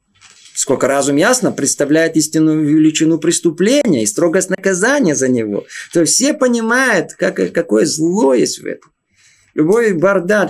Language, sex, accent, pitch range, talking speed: Russian, male, native, 145-190 Hz, 130 wpm